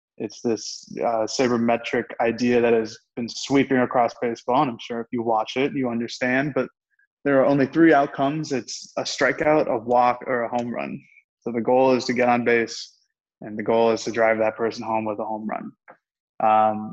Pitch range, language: 115-130 Hz, English